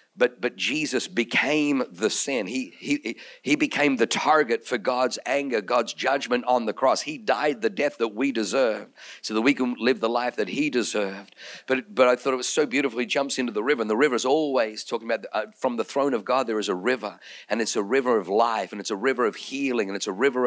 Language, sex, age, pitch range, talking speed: English, male, 50-69, 110-135 Hz, 245 wpm